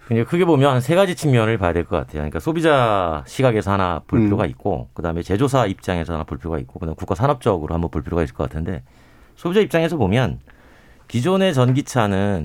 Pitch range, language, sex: 90-120 Hz, Korean, male